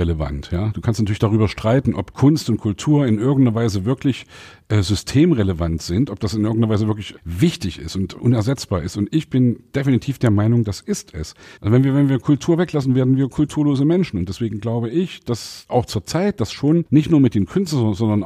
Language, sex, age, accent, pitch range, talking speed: German, male, 50-69, German, 105-135 Hz, 205 wpm